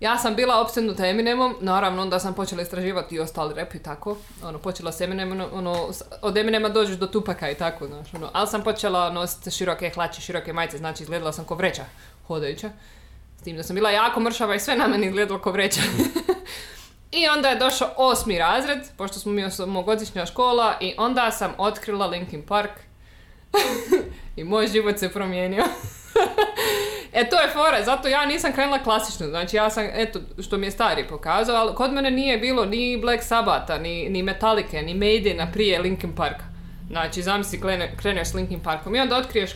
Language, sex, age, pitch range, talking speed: Croatian, female, 20-39, 170-225 Hz, 185 wpm